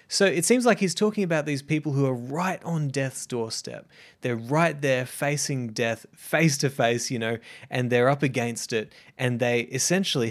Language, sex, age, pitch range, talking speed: English, male, 20-39, 115-150 Hz, 190 wpm